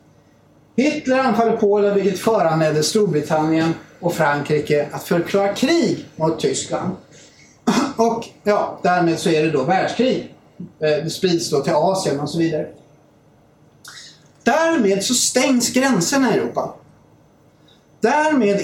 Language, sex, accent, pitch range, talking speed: Swedish, male, native, 155-215 Hz, 115 wpm